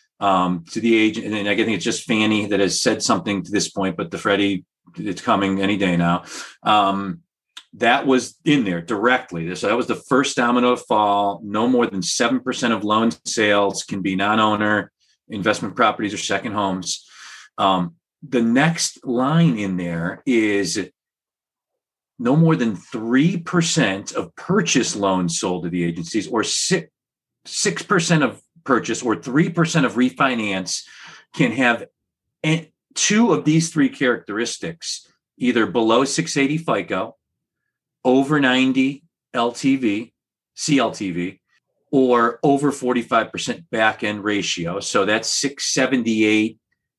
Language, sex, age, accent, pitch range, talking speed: English, male, 40-59, American, 100-130 Hz, 130 wpm